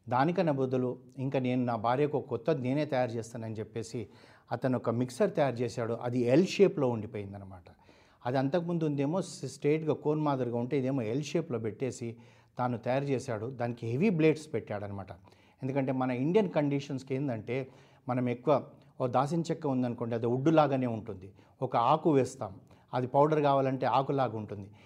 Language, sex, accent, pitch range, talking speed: Telugu, male, native, 120-140 Hz, 145 wpm